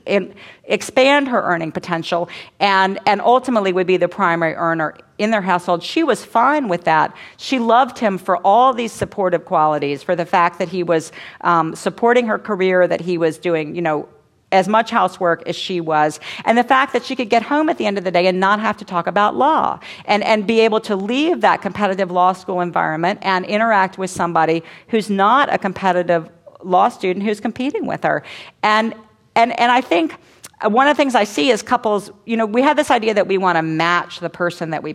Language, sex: English, female